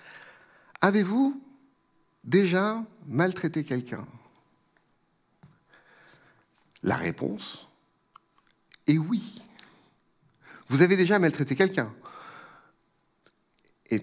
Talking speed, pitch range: 60 wpm, 115-165 Hz